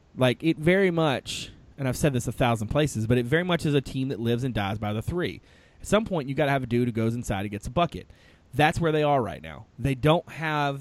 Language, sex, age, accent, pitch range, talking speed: English, male, 30-49, American, 105-150 Hz, 280 wpm